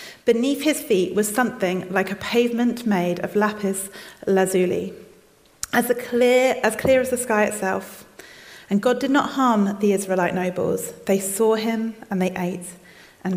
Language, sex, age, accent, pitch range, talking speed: English, female, 30-49, British, 185-225 Hz, 160 wpm